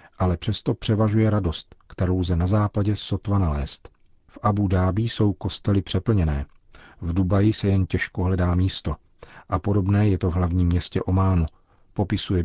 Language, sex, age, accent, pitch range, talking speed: Czech, male, 40-59, native, 85-100 Hz, 155 wpm